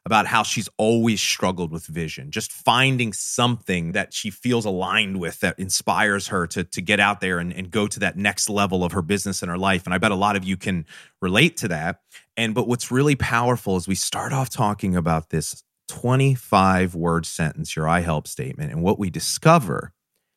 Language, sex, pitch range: English, male, 85-115 Hz